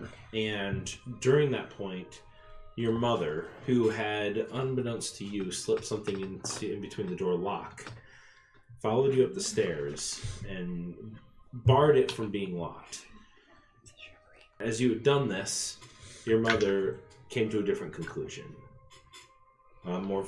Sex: male